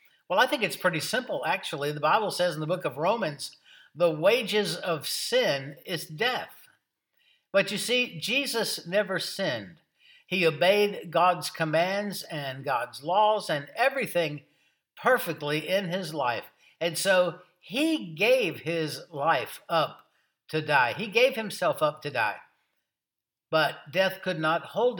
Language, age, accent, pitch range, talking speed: English, 60-79, American, 160-215 Hz, 145 wpm